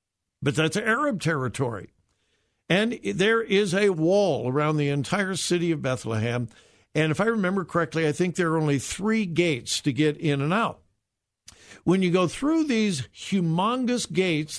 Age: 60-79